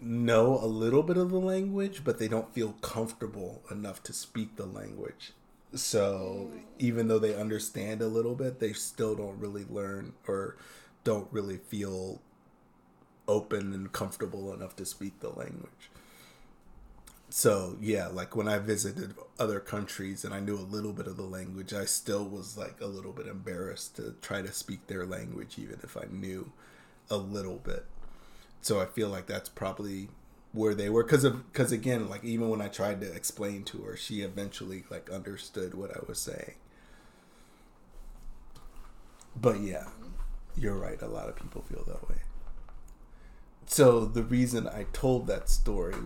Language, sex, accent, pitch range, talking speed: English, male, American, 95-110 Hz, 165 wpm